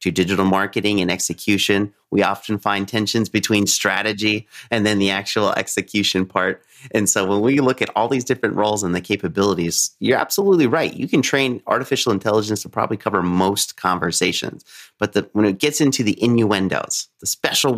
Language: English